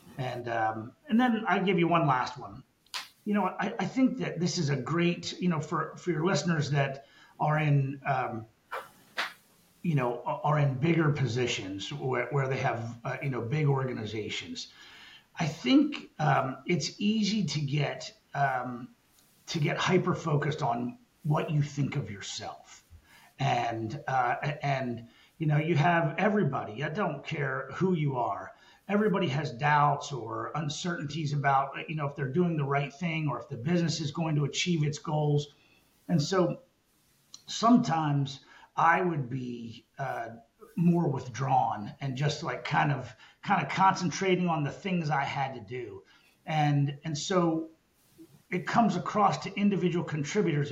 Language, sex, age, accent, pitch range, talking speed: English, male, 40-59, American, 135-170 Hz, 155 wpm